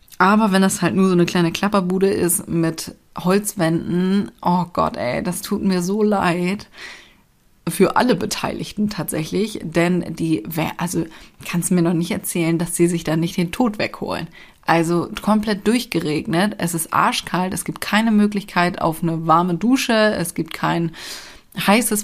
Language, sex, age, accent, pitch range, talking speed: German, female, 30-49, German, 165-200 Hz, 160 wpm